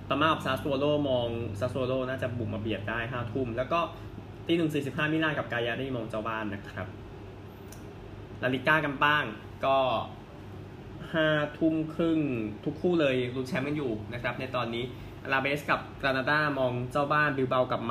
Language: Thai